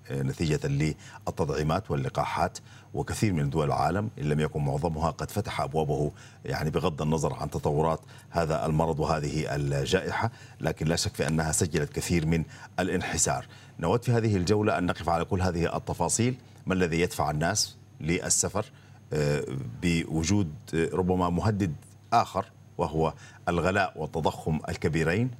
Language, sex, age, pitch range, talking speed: Arabic, male, 50-69, 80-110 Hz, 130 wpm